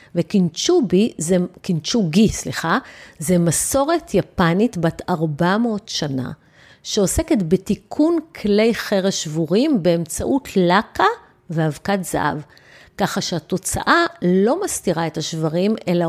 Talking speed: 90 wpm